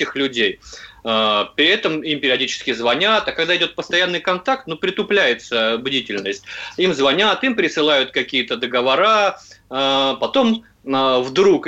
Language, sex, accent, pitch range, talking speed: Russian, male, native, 120-195 Hz, 115 wpm